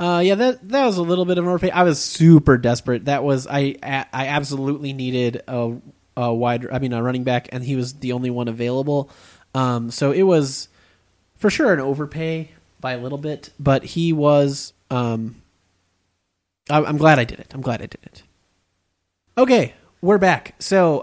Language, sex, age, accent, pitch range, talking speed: English, male, 30-49, American, 125-165 Hz, 190 wpm